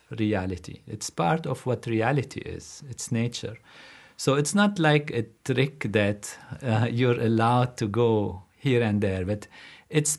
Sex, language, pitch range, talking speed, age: male, English, 105-130 Hz, 155 wpm, 50-69